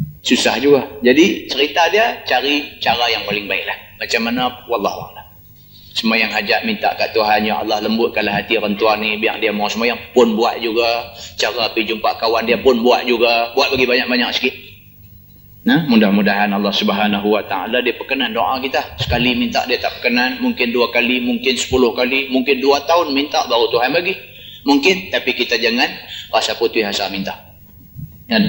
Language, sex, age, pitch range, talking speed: Malay, male, 30-49, 115-140 Hz, 170 wpm